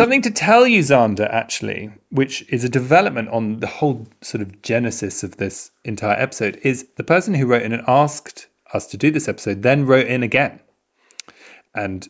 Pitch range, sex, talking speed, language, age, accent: 105-140 Hz, male, 190 wpm, English, 30-49, British